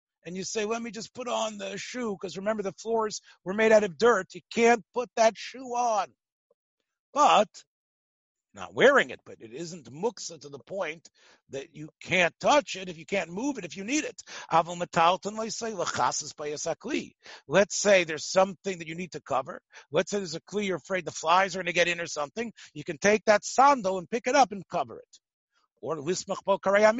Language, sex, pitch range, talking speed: English, male, 175-220 Hz, 200 wpm